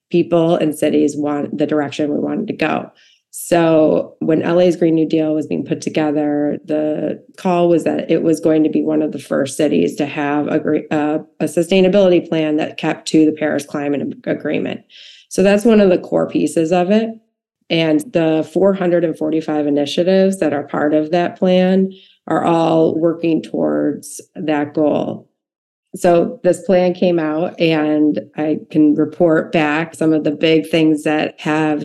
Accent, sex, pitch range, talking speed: American, female, 150-170 Hz, 170 wpm